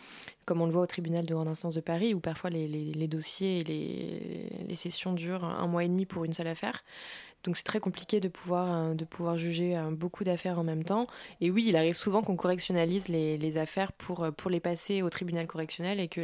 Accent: French